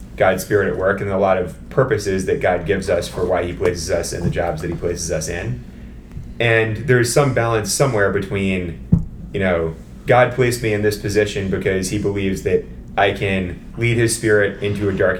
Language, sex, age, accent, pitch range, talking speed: English, male, 30-49, American, 90-110 Hz, 205 wpm